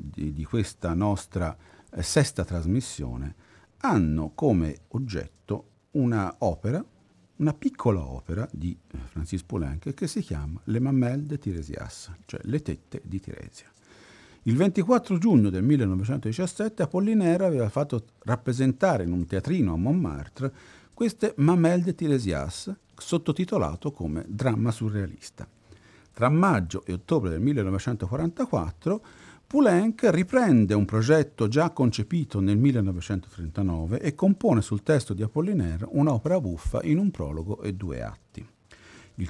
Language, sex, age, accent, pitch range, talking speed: Italian, male, 50-69, native, 95-150 Hz, 125 wpm